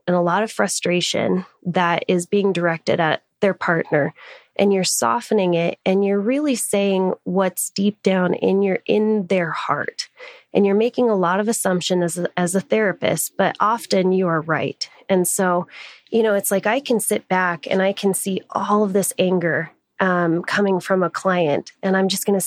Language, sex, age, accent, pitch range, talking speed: English, female, 20-39, American, 175-205 Hz, 195 wpm